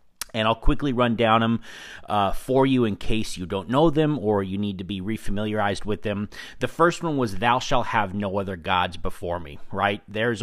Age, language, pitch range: 30-49, English, 95-115 Hz